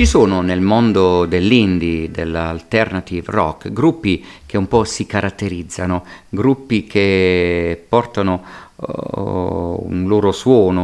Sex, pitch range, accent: male, 90-105 Hz, native